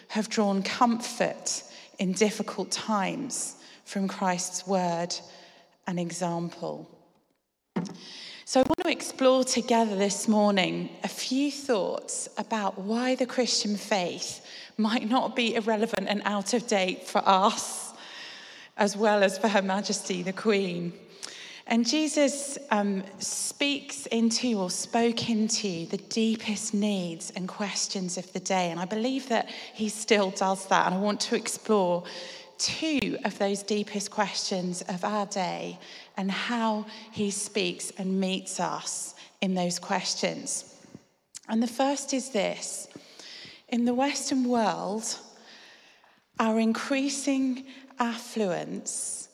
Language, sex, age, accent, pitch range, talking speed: English, female, 30-49, British, 195-235 Hz, 125 wpm